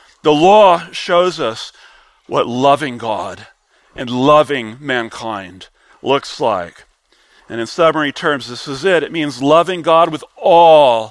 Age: 40-59